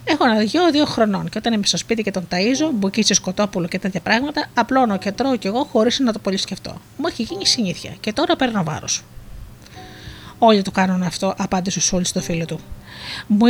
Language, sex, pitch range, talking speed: Greek, female, 185-240 Hz, 195 wpm